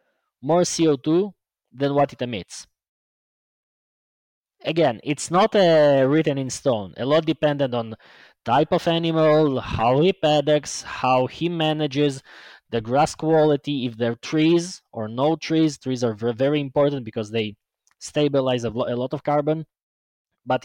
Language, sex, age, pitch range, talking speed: English, male, 20-39, 125-160 Hz, 140 wpm